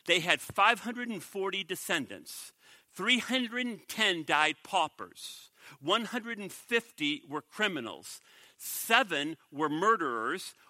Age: 50-69